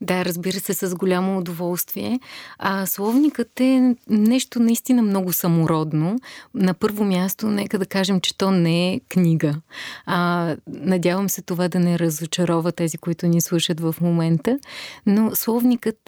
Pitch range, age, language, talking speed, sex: 180-215 Hz, 30-49, Bulgarian, 140 wpm, female